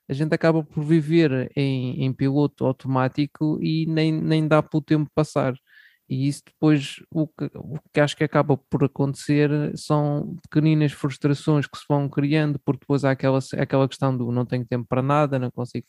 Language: Portuguese